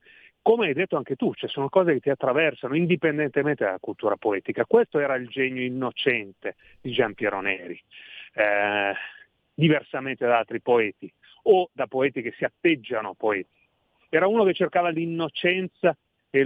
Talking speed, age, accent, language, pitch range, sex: 160 wpm, 40-59, native, Italian, 120-160 Hz, male